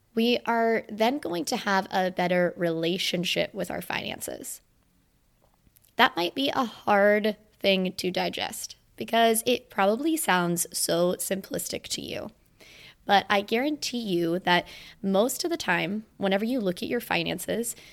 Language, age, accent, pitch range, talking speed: English, 20-39, American, 180-235 Hz, 145 wpm